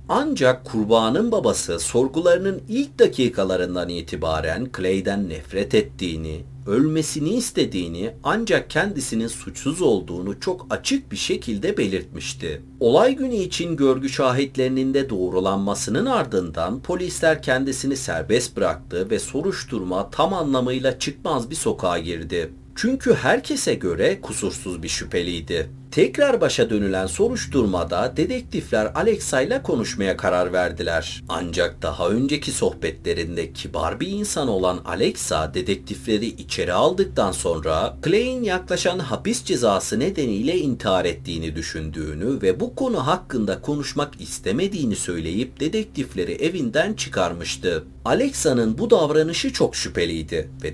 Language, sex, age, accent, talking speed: Turkish, male, 50-69, native, 110 wpm